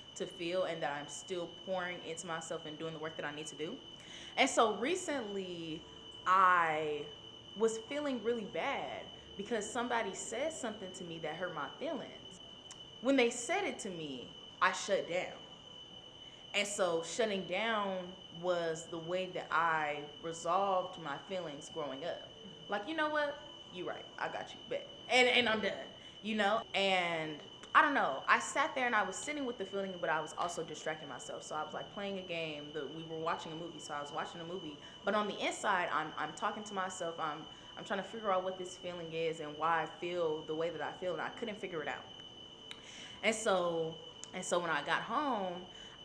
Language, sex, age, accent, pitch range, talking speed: English, female, 20-39, American, 160-210 Hz, 205 wpm